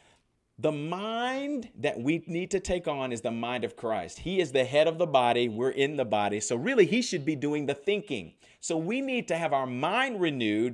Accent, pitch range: American, 140-185 Hz